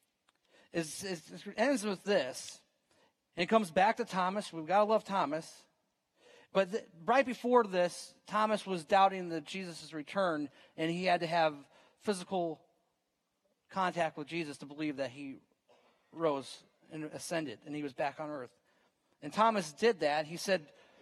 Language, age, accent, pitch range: English, 40-59, American, 165-215 Hz